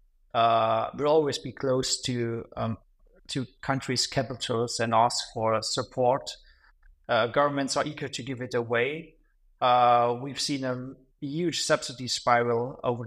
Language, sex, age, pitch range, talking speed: English, male, 30-49, 120-135 Hz, 135 wpm